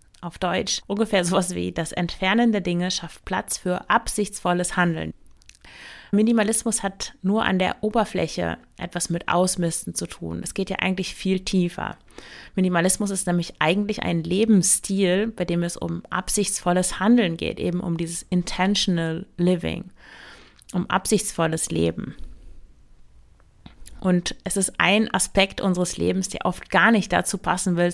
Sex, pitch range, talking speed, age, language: female, 175-195 Hz, 140 wpm, 30-49, German